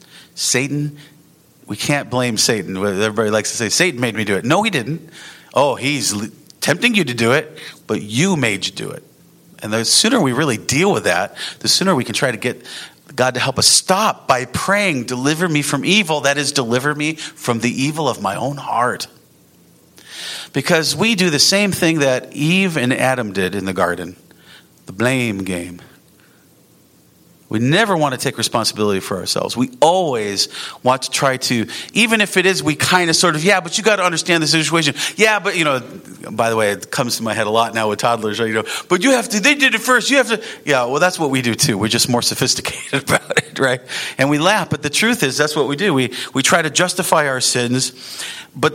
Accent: American